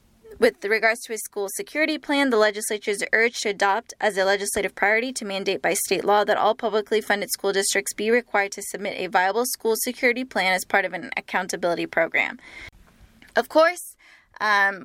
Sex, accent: female, American